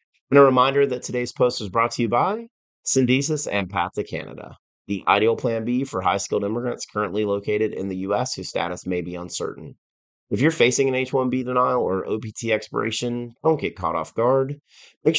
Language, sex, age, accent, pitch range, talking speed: English, male, 30-49, American, 100-130 Hz, 190 wpm